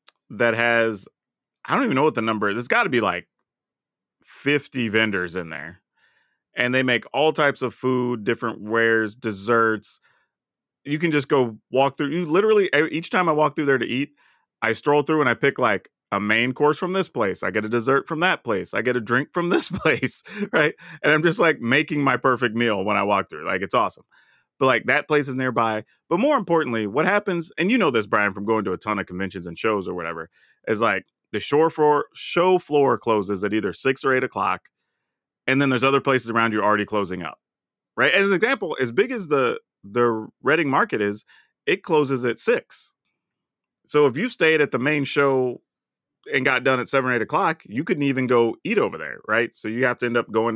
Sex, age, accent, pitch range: male, 30-49, American, 110-150 Hz